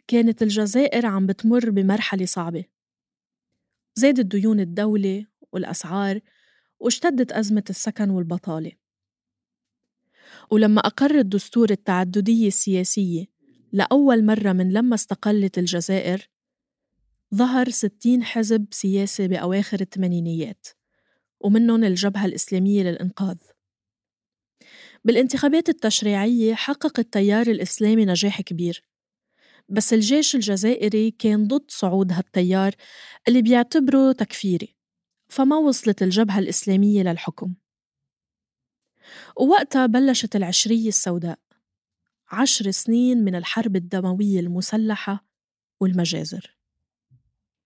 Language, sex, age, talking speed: Arabic, female, 20-39, 85 wpm